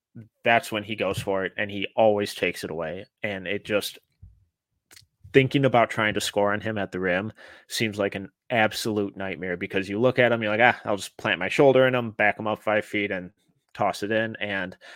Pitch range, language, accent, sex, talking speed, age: 100-120 Hz, English, American, male, 220 wpm, 20-39